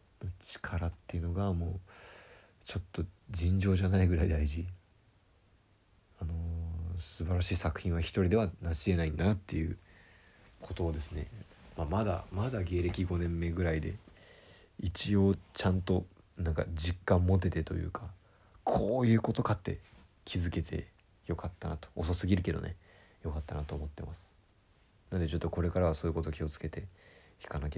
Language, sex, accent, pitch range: Japanese, male, native, 85-100 Hz